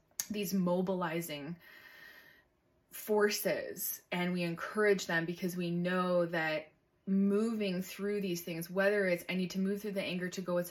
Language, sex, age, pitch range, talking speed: English, female, 20-39, 175-205 Hz, 150 wpm